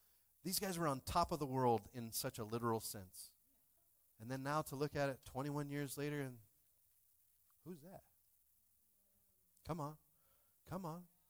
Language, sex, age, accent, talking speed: English, male, 40-59, American, 160 wpm